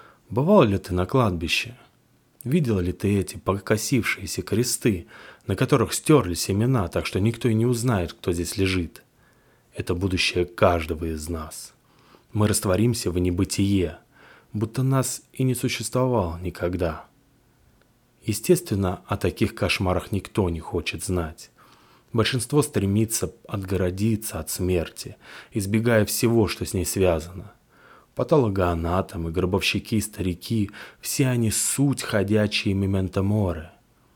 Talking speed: 115 wpm